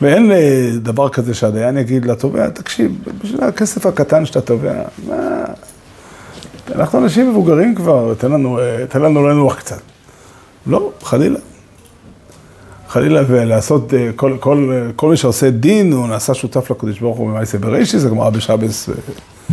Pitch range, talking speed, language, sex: 115-145 Hz, 130 wpm, Hebrew, male